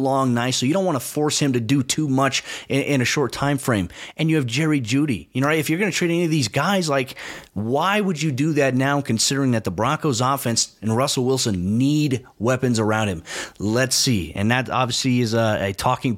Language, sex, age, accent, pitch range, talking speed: English, male, 30-49, American, 125-150 Hz, 235 wpm